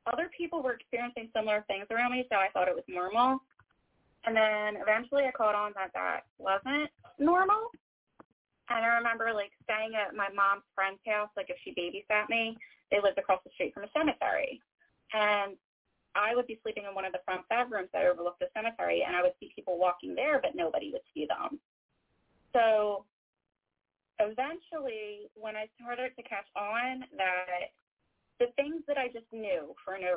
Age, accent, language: 20-39, American, English